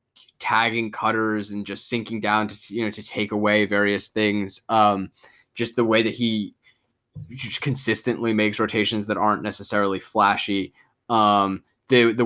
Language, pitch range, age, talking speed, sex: English, 105-130 Hz, 10-29, 150 wpm, male